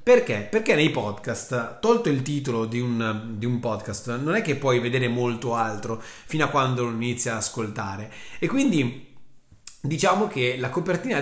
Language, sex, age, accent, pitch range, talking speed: Italian, male, 30-49, native, 120-175 Hz, 170 wpm